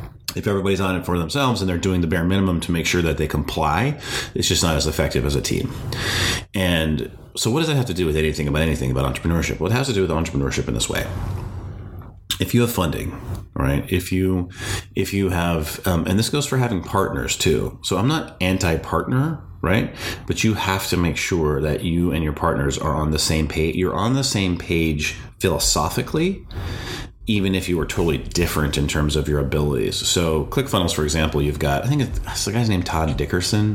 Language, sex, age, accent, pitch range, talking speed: English, male, 30-49, American, 75-100 Hz, 210 wpm